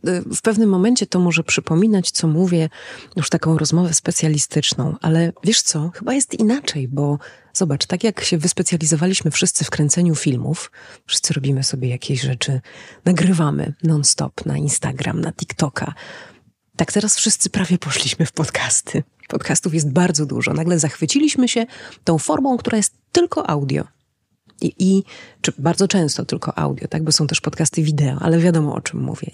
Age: 30-49